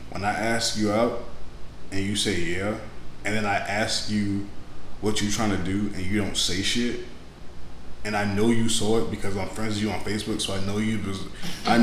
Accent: American